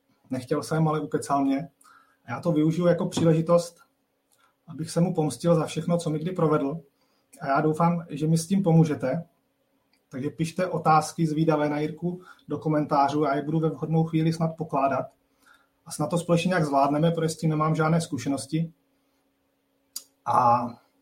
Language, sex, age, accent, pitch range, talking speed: Czech, male, 30-49, native, 140-175 Hz, 165 wpm